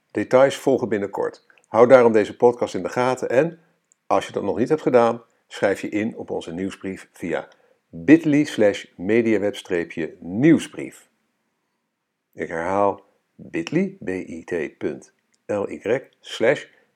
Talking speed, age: 115 wpm, 50-69